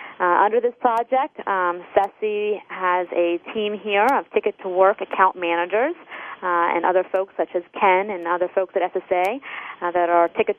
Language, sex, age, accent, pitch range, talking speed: English, female, 30-49, American, 185-225 Hz, 180 wpm